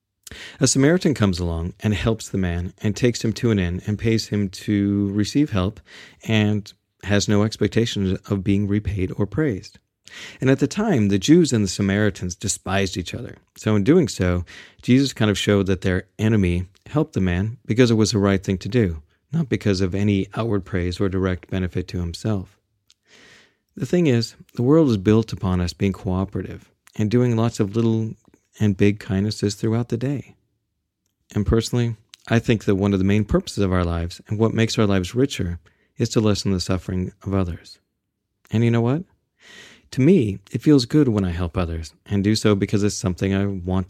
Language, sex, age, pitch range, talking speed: English, male, 40-59, 95-115 Hz, 195 wpm